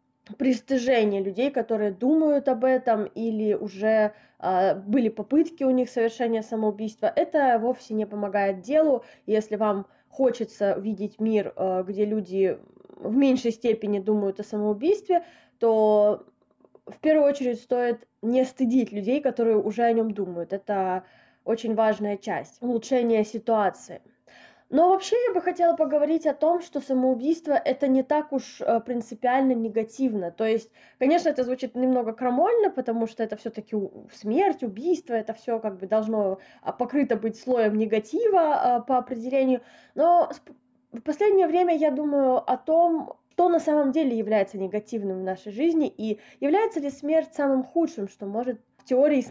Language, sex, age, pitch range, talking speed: Russian, female, 20-39, 215-290 Hz, 150 wpm